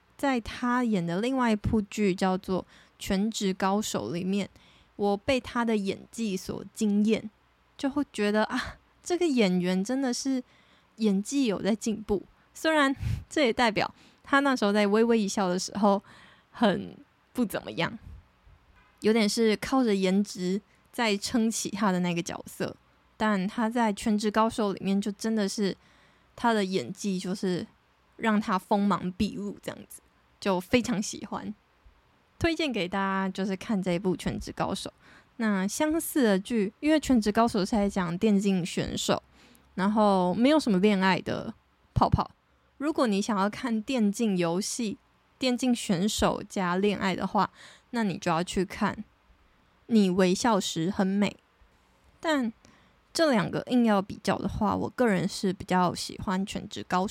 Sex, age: female, 20-39